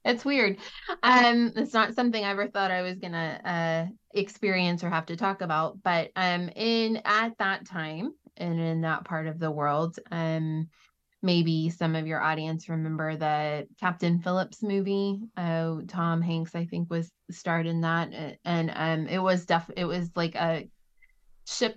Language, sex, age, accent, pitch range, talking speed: English, female, 20-39, American, 160-195 Hz, 170 wpm